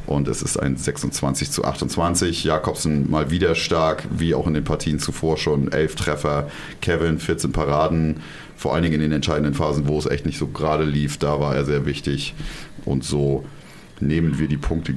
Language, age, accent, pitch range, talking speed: German, 30-49, German, 80-100 Hz, 190 wpm